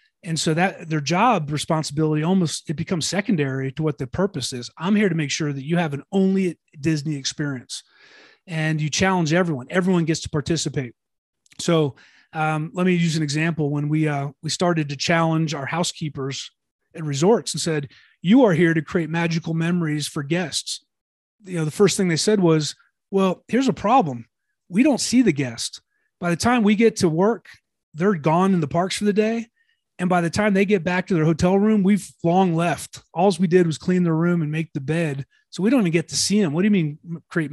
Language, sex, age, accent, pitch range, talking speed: English, male, 30-49, American, 155-190 Hz, 215 wpm